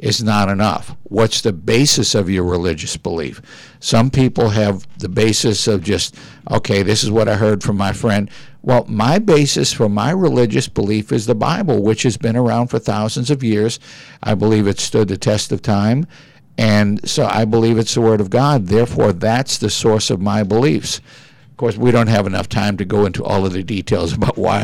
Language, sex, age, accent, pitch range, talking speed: English, male, 60-79, American, 105-125 Hz, 205 wpm